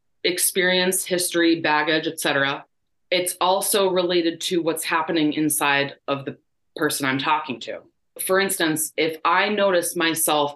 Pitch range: 145-175 Hz